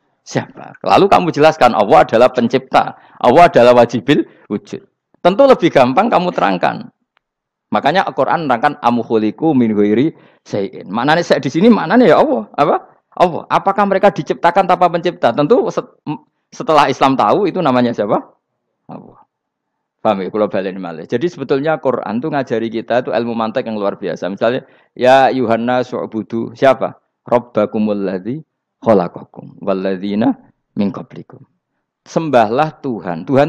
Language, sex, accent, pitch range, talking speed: Indonesian, male, native, 110-160 Hz, 125 wpm